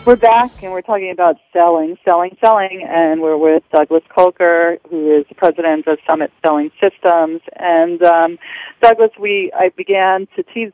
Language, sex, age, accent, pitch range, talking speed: English, female, 40-59, American, 155-185 Hz, 170 wpm